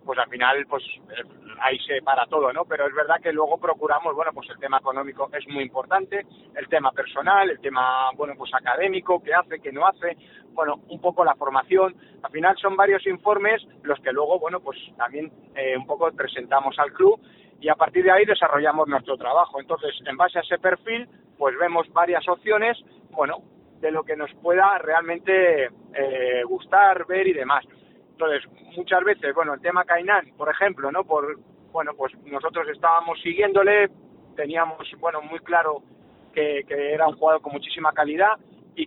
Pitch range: 150-195 Hz